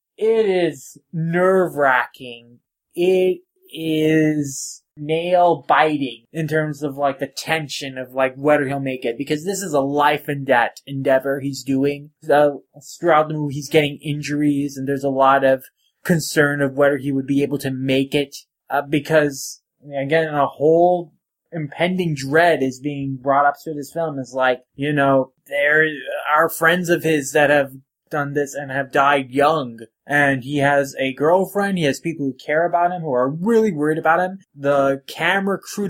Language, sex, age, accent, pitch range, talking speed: English, male, 20-39, American, 140-165 Hz, 165 wpm